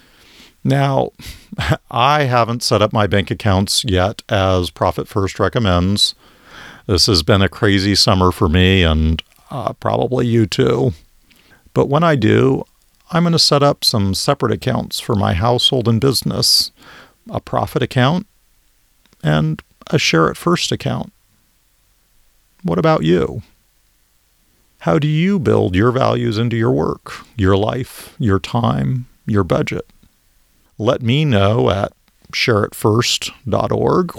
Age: 50-69